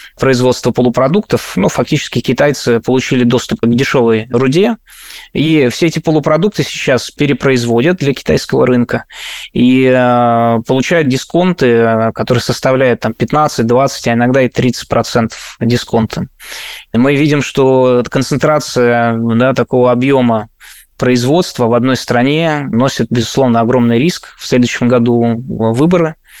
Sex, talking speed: male, 120 wpm